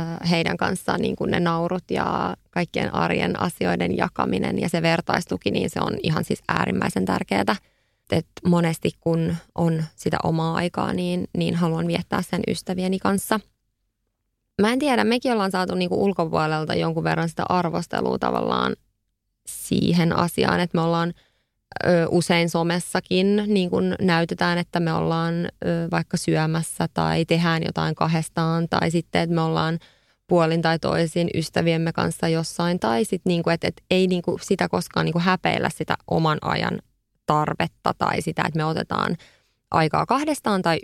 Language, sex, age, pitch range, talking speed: Finnish, female, 20-39, 160-175 Hz, 145 wpm